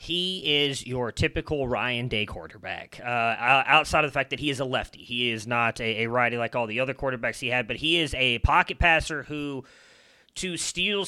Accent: American